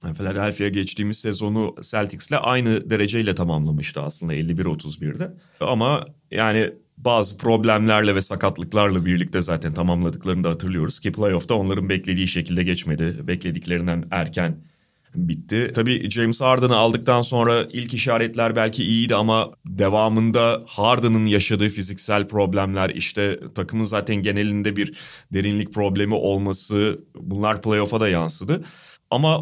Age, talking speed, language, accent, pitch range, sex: 30-49, 115 wpm, Turkish, native, 95-125 Hz, male